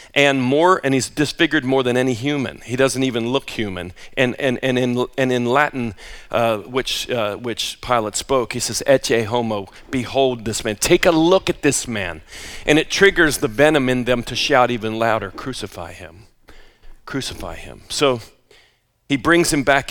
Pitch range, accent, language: 120-170 Hz, American, English